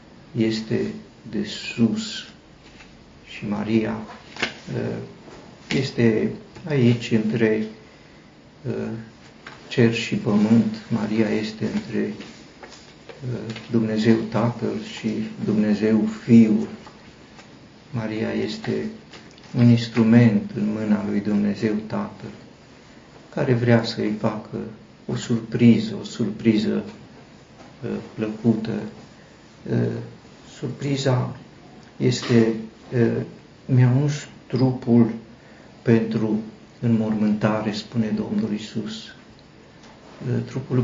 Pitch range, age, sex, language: 110-120 Hz, 50-69, male, Romanian